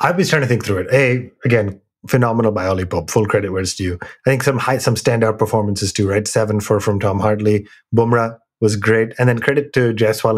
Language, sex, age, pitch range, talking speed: English, male, 30-49, 105-130 Hz, 225 wpm